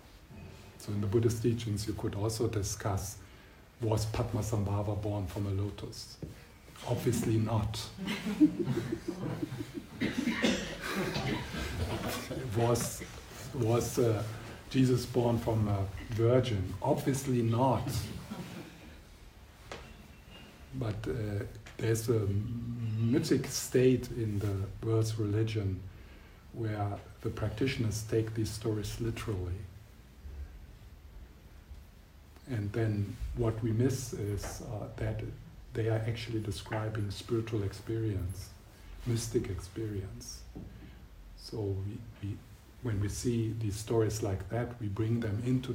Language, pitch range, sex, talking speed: English, 100-115 Hz, male, 95 wpm